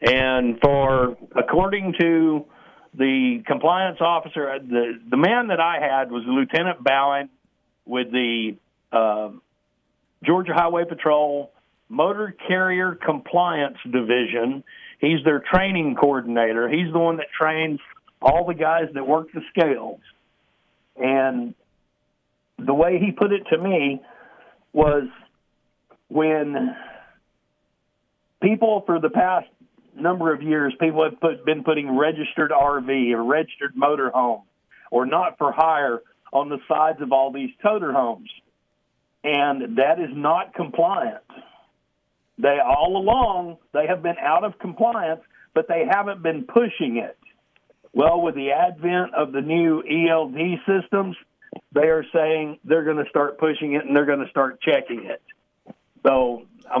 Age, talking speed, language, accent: 50-69, 135 wpm, English, American